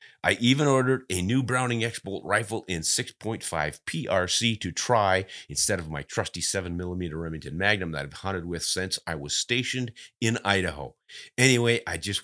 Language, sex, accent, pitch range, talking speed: English, male, American, 85-110 Hz, 160 wpm